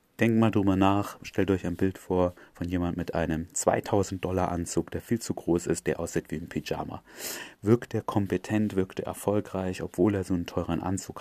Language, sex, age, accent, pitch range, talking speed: German, male, 30-49, German, 85-100 Hz, 195 wpm